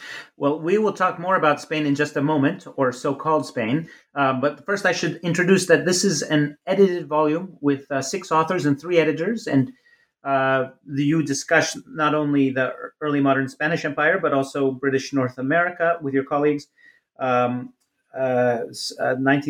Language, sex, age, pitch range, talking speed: English, male, 30-49, 135-160 Hz, 165 wpm